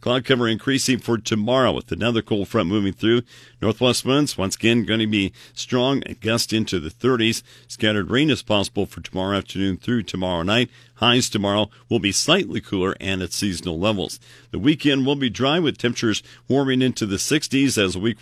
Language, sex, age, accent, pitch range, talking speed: English, male, 50-69, American, 100-125 Hz, 190 wpm